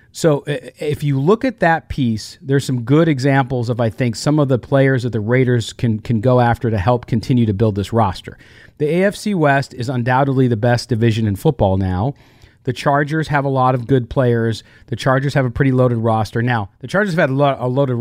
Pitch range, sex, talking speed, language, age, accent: 115-145 Hz, male, 215 wpm, English, 40-59, American